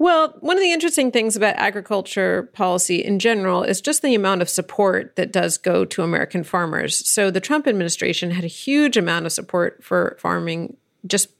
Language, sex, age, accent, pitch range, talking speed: English, female, 40-59, American, 165-205 Hz, 190 wpm